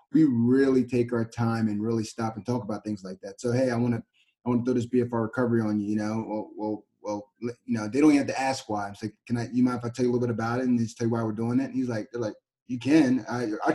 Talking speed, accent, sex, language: 325 wpm, American, male, English